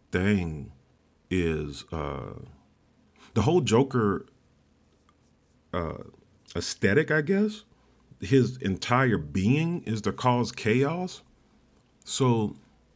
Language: English